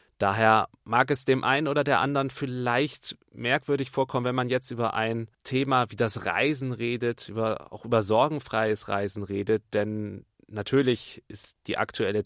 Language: German